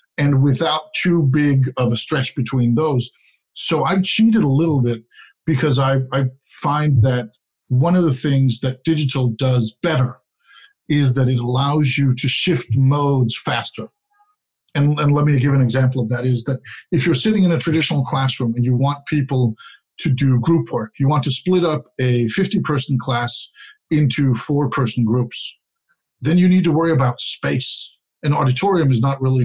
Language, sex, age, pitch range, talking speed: English, male, 50-69, 125-155 Hz, 175 wpm